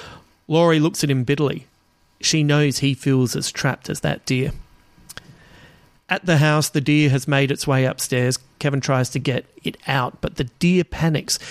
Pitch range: 130-150 Hz